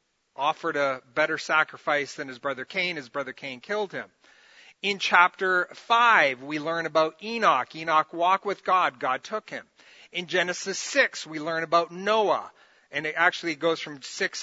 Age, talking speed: 40-59, 165 wpm